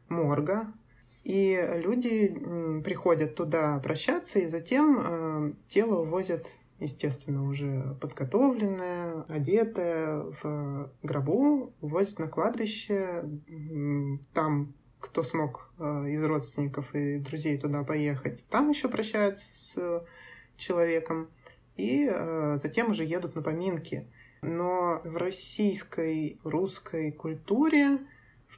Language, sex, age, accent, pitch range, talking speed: Russian, male, 20-39, native, 145-180 Hz, 95 wpm